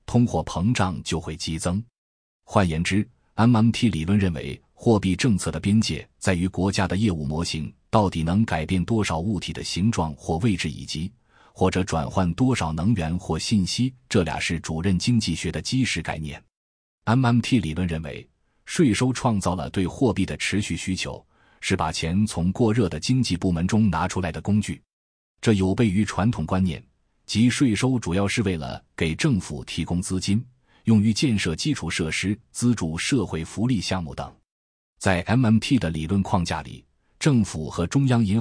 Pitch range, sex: 80-110 Hz, male